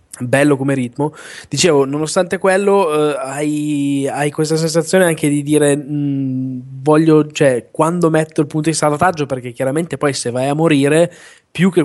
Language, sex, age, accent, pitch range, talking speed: Italian, male, 20-39, native, 125-150 Hz, 160 wpm